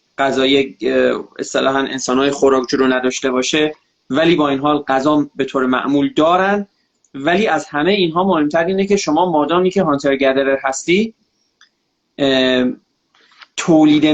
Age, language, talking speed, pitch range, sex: 30-49, Persian, 125 wpm, 150-195 Hz, male